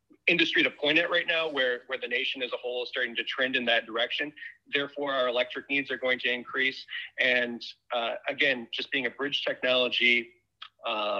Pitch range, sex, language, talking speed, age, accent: 120-150 Hz, male, English, 200 wpm, 30-49, American